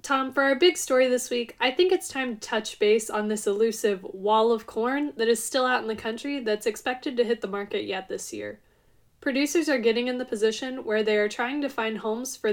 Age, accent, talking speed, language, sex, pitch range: 10-29, American, 240 wpm, English, female, 210-255 Hz